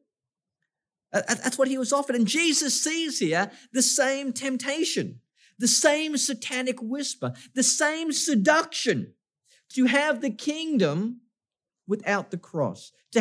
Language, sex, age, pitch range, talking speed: English, male, 50-69, 165-240 Hz, 125 wpm